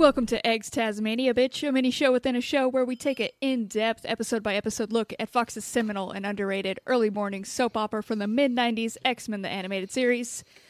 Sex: female